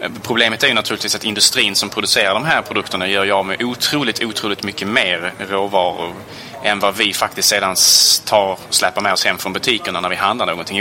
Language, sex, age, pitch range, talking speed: Swedish, male, 20-39, 100-115 Hz, 195 wpm